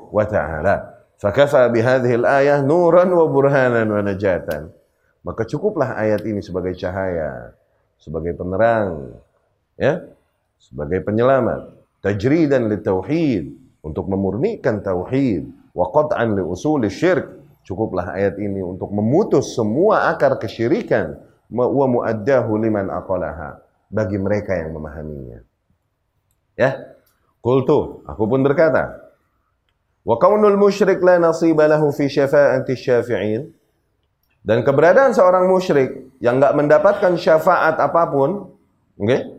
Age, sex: 30-49, male